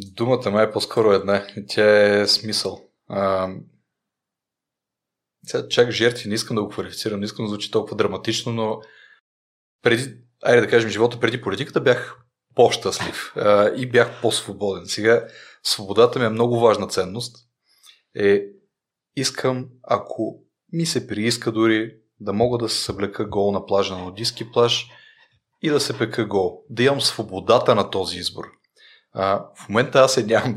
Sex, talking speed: male, 150 wpm